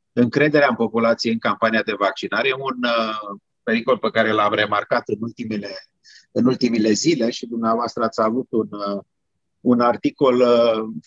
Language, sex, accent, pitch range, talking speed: Romanian, male, native, 110-140 Hz, 155 wpm